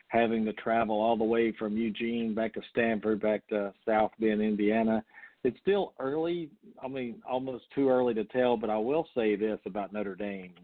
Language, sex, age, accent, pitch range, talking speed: English, male, 50-69, American, 105-120 Hz, 190 wpm